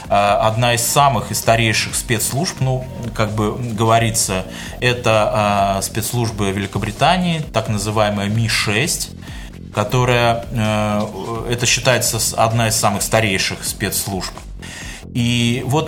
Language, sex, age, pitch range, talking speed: Russian, male, 20-39, 105-125 Hz, 105 wpm